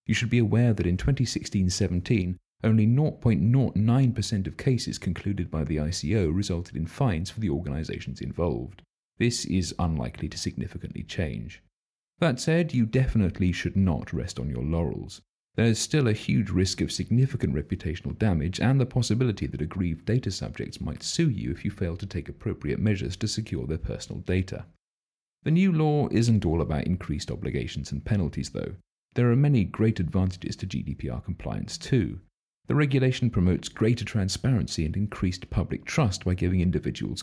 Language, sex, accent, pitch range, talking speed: English, male, British, 85-120 Hz, 165 wpm